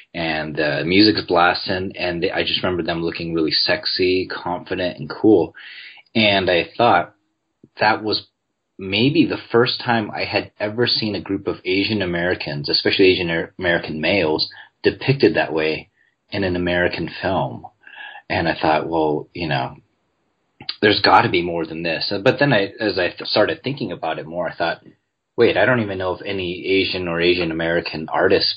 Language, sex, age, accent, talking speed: English, male, 30-49, American, 165 wpm